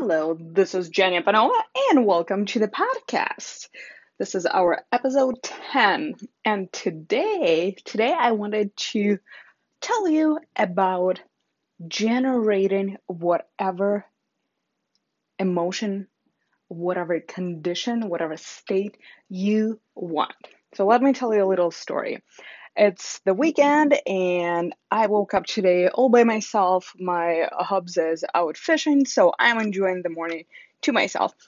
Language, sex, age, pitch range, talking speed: English, female, 20-39, 185-265 Hz, 120 wpm